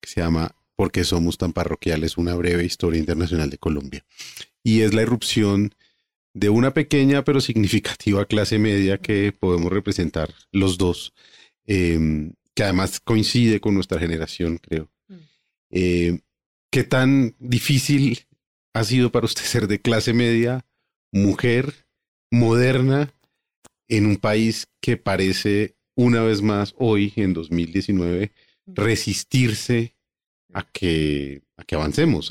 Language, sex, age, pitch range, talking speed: Spanish, male, 40-59, 85-110 Hz, 130 wpm